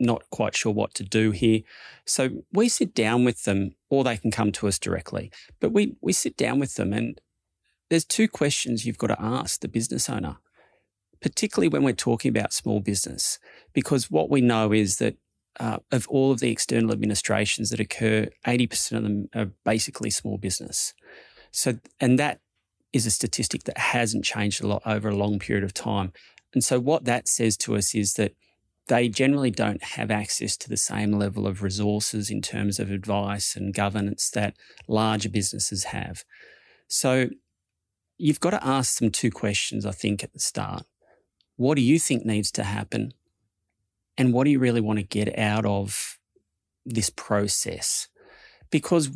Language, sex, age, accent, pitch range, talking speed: English, male, 30-49, Australian, 100-125 Hz, 180 wpm